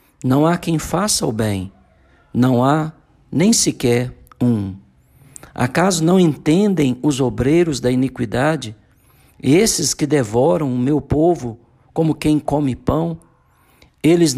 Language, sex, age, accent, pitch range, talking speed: Portuguese, male, 50-69, Brazilian, 115-155 Hz, 120 wpm